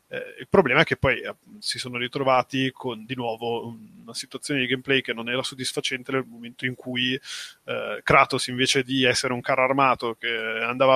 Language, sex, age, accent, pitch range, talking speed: Italian, male, 20-39, native, 125-140 Hz, 190 wpm